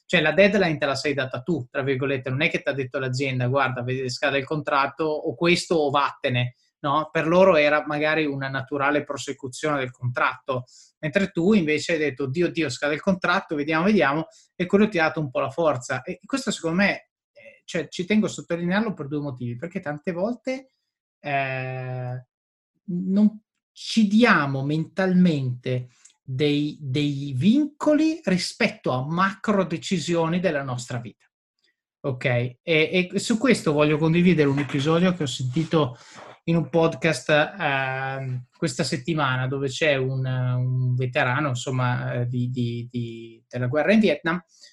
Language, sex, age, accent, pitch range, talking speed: Italian, male, 30-49, native, 135-175 Hz, 155 wpm